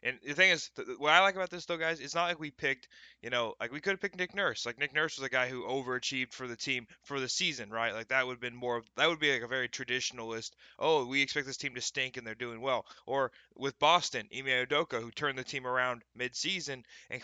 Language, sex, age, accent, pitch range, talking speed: English, male, 20-39, American, 120-145 Hz, 265 wpm